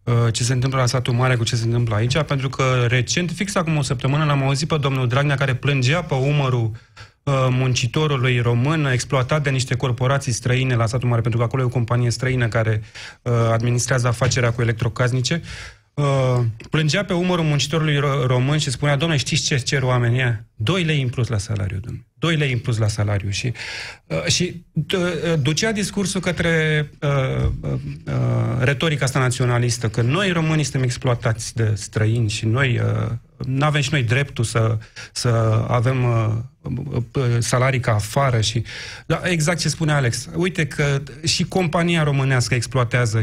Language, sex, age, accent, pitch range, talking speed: Romanian, male, 30-49, native, 120-150 Hz, 160 wpm